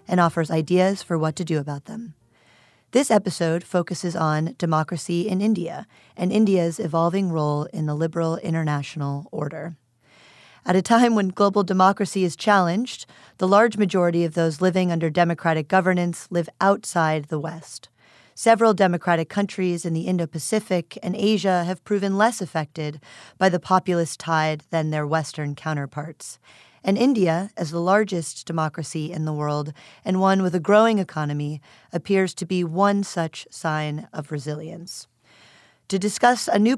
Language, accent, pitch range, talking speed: English, American, 155-195 Hz, 150 wpm